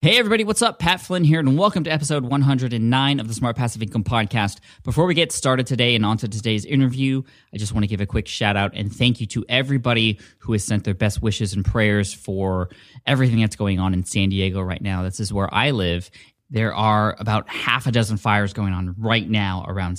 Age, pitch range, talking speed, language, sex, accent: 20-39, 95-115 Hz, 225 wpm, English, male, American